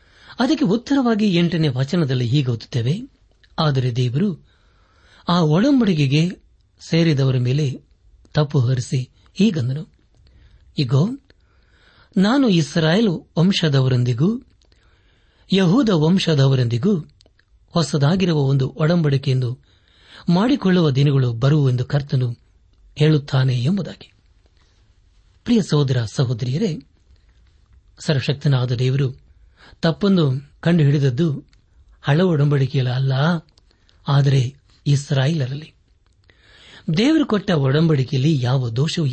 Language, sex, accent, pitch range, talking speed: Kannada, male, native, 125-165 Hz, 65 wpm